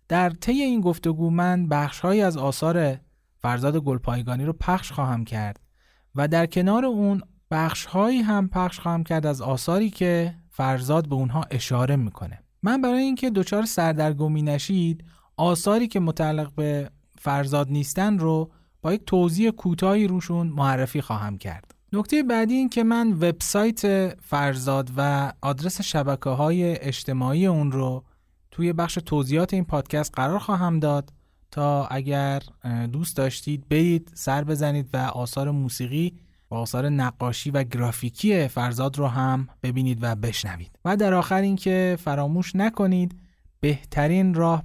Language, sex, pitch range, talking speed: Persian, male, 130-180 Hz, 140 wpm